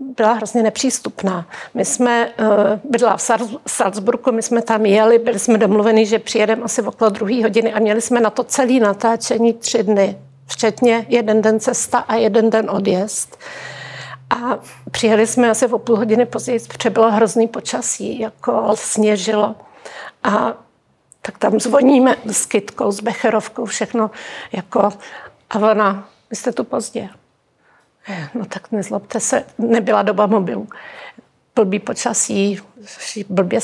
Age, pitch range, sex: 50-69, 215-235 Hz, female